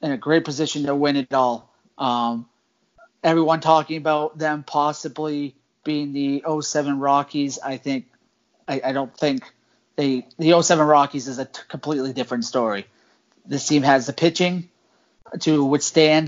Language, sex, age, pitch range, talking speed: English, male, 30-49, 125-150 Hz, 150 wpm